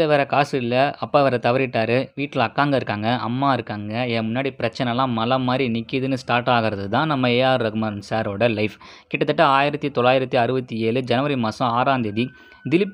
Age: 20-39